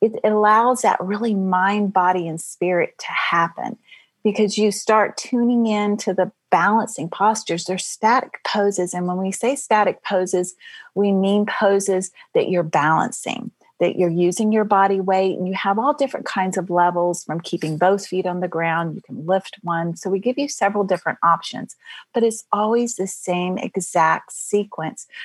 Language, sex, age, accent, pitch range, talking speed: English, female, 40-59, American, 180-220 Hz, 175 wpm